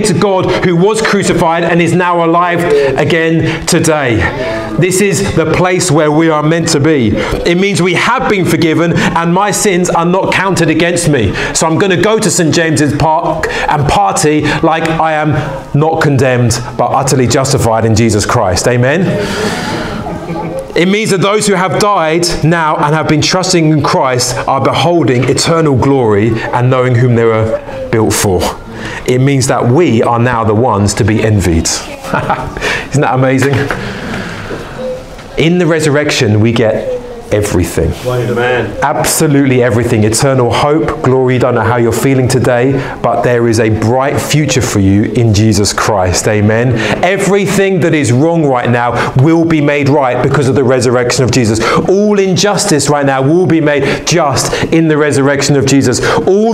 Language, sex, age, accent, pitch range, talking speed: English, male, 30-49, British, 125-170 Hz, 165 wpm